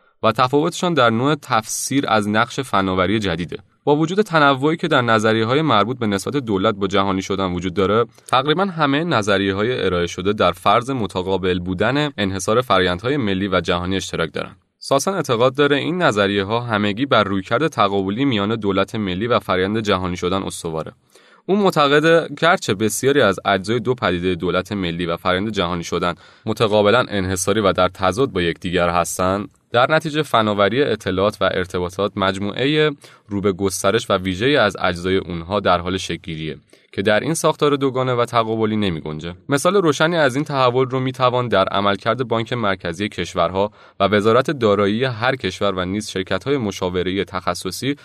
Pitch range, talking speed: 95-130 Hz, 160 wpm